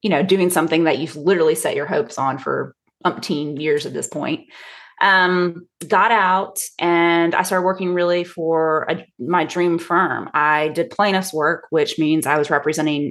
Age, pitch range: 20-39, 155-190 Hz